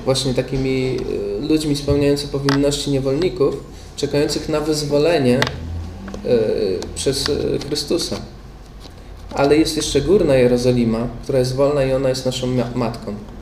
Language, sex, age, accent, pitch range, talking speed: Polish, male, 20-39, native, 120-135 Hz, 105 wpm